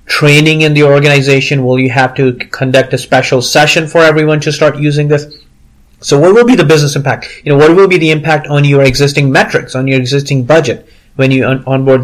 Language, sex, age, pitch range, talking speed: English, male, 30-49, 125-150 Hz, 215 wpm